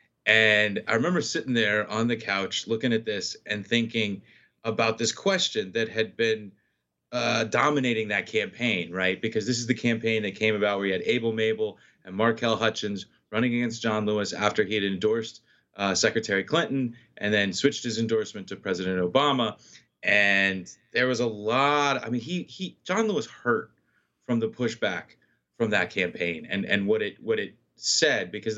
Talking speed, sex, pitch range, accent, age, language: 180 wpm, male, 105-130 Hz, American, 30-49, English